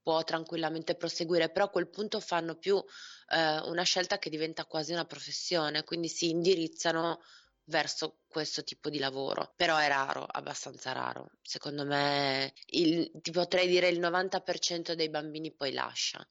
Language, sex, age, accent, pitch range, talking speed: Italian, female, 20-39, native, 150-170 Hz, 150 wpm